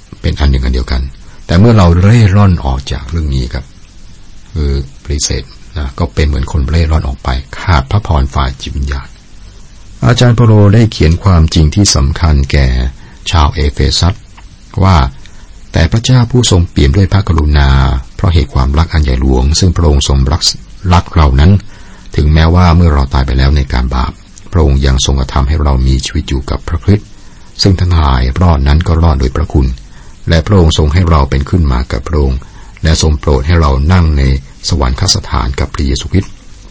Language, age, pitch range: Thai, 60-79, 70-95 Hz